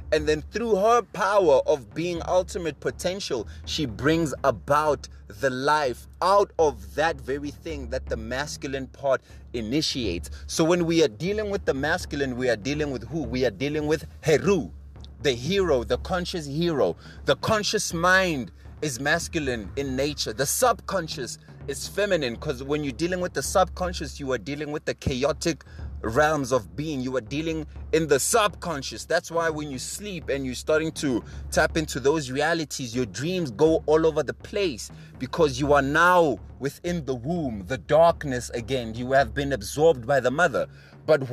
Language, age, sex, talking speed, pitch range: English, 30-49, male, 170 wpm, 130-170 Hz